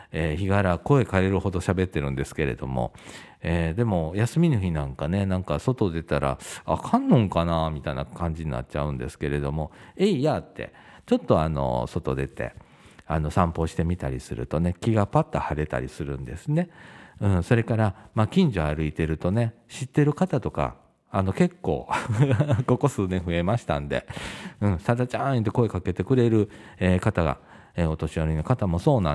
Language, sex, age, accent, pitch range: Japanese, male, 50-69, native, 75-115 Hz